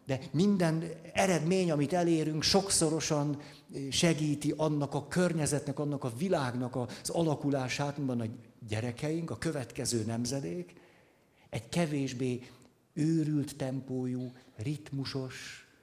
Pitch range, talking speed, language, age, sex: 130-160 Hz, 100 wpm, Hungarian, 60-79, male